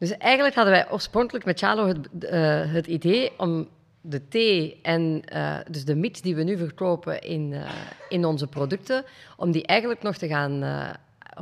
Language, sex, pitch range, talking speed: Dutch, female, 150-200 Hz, 185 wpm